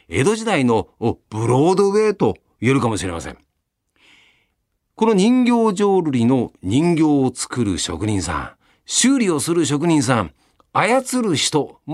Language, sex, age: Japanese, male, 40-59